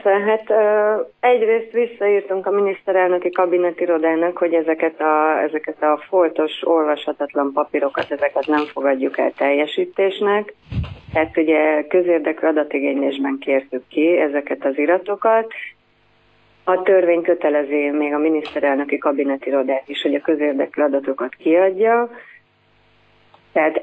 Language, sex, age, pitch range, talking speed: Hungarian, female, 30-49, 150-190 Hz, 105 wpm